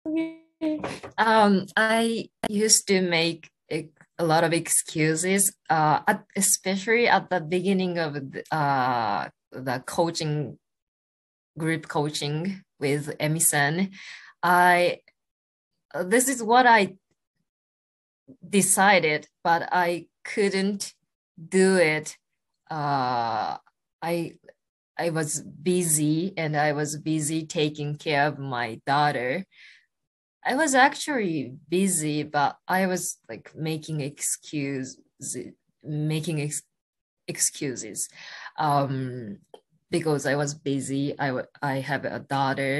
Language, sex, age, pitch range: Japanese, female, 20-39, 150-190 Hz